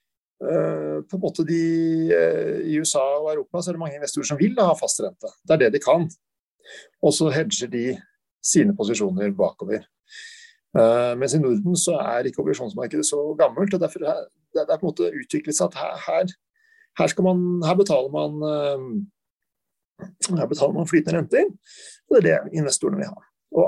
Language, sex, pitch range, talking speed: English, male, 150-205 Hz, 195 wpm